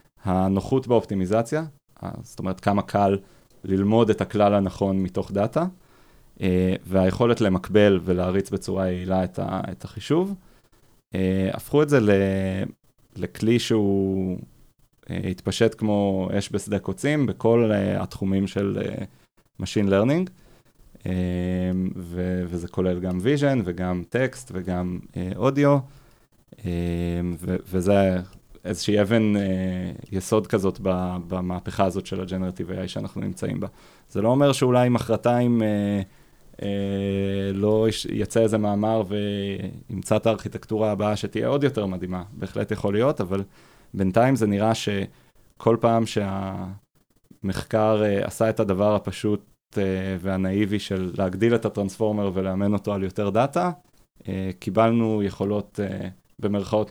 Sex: male